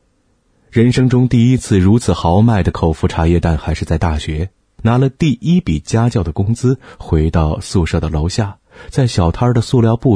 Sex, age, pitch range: male, 30-49, 85-115 Hz